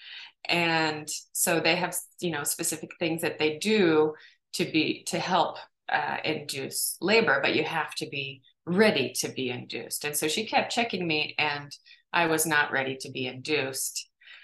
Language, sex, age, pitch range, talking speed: English, female, 20-39, 155-200 Hz, 170 wpm